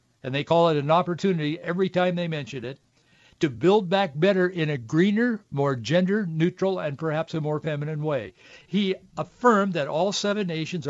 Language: English